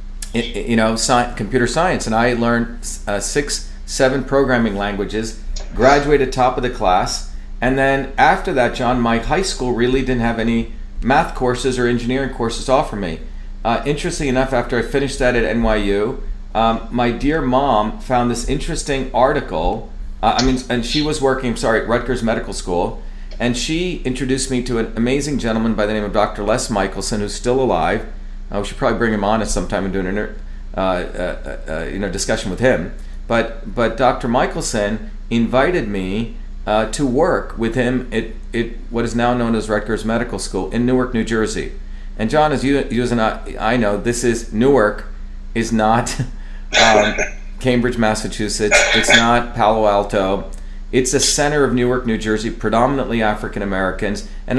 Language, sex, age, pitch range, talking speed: English, male, 40-59, 105-125 Hz, 175 wpm